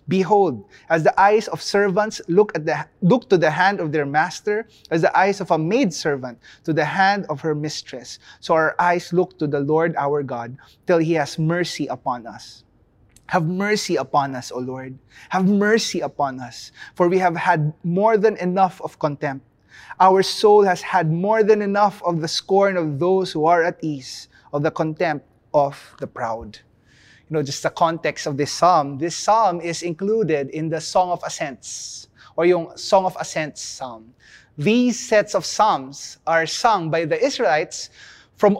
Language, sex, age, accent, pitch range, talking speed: English, male, 20-39, Filipino, 145-190 Hz, 180 wpm